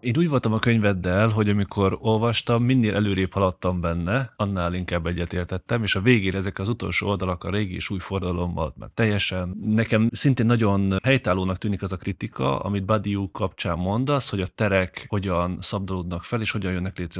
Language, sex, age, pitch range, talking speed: Hungarian, male, 30-49, 90-110 Hz, 180 wpm